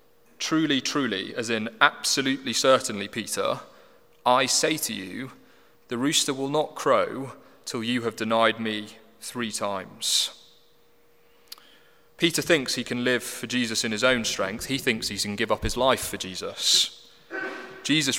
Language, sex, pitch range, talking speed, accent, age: English, male, 115-165 Hz, 150 wpm, British, 30-49